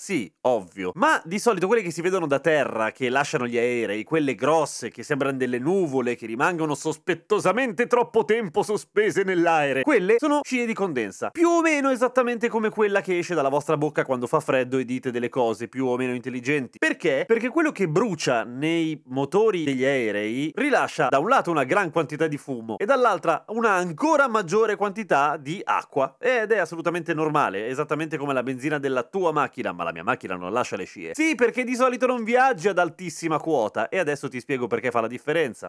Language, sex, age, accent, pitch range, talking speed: Italian, male, 30-49, native, 140-220 Hz, 195 wpm